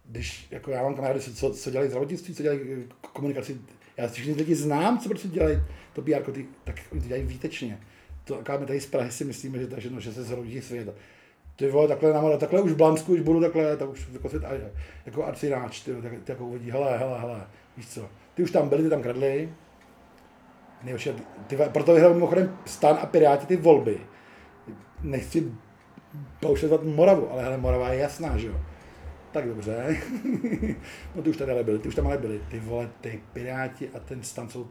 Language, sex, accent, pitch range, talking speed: Czech, male, native, 110-150 Hz, 195 wpm